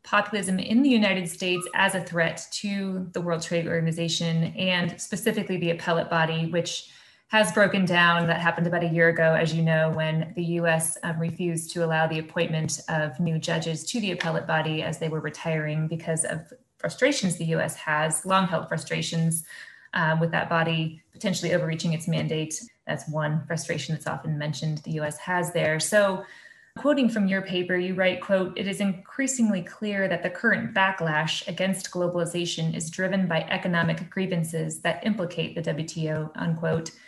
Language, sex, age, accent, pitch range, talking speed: English, female, 20-39, American, 165-190 Hz, 170 wpm